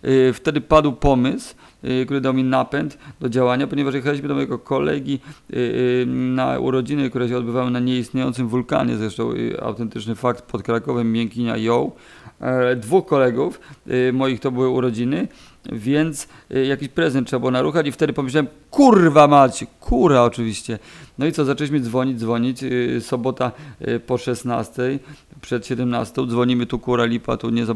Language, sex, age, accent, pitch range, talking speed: Polish, male, 40-59, native, 120-135 Hz, 145 wpm